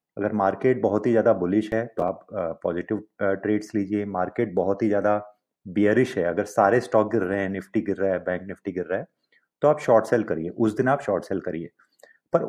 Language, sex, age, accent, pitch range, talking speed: Hindi, male, 30-49, native, 100-125 Hz, 215 wpm